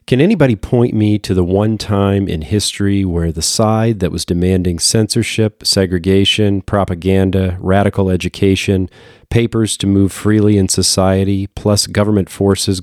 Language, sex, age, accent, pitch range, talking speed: English, male, 40-59, American, 95-110 Hz, 140 wpm